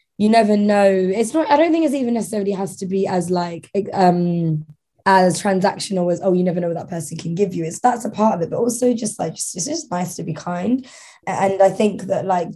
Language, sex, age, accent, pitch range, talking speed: English, female, 10-29, British, 165-205 Hz, 245 wpm